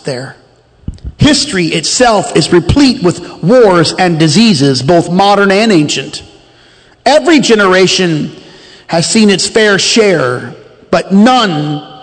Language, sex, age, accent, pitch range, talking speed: English, male, 40-59, American, 170-230 Hz, 110 wpm